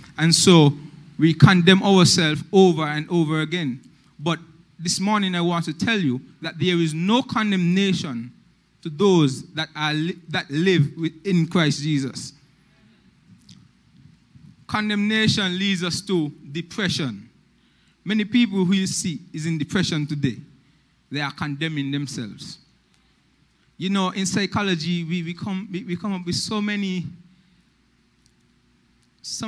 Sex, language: male, English